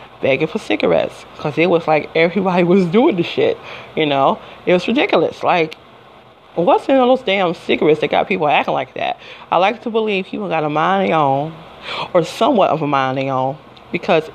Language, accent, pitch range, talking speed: English, American, 160-210 Hz, 210 wpm